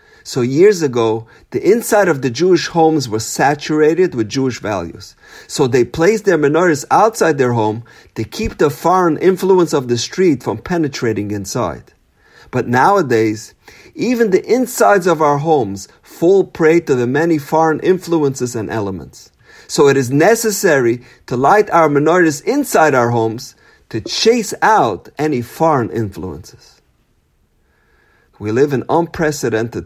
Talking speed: 145 wpm